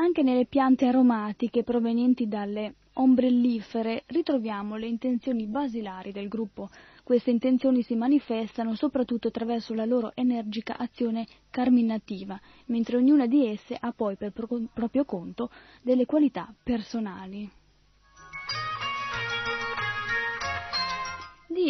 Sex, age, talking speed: female, 20-39, 100 wpm